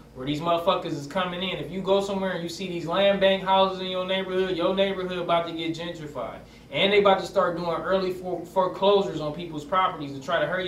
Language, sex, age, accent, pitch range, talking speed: English, male, 20-39, American, 165-215 Hz, 230 wpm